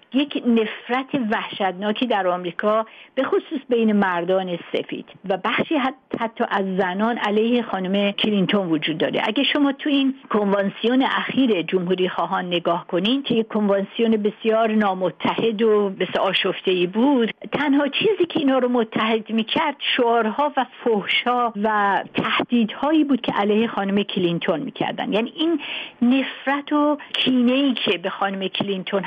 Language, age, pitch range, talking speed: Persian, 50-69, 195-255 Hz, 140 wpm